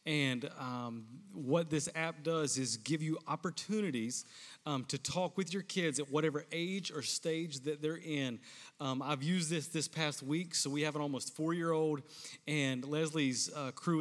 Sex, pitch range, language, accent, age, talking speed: male, 135-165 Hz, English, American, 30-49, 175 wpm